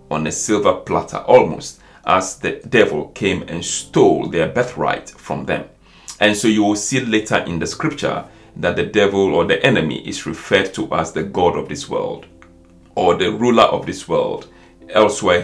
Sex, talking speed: male, 180 wpm